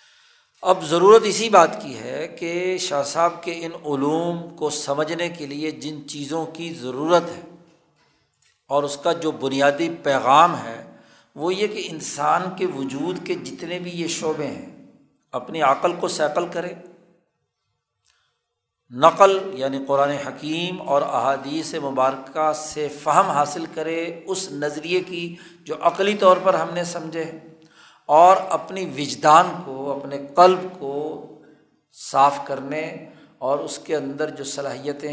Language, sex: Urdu, male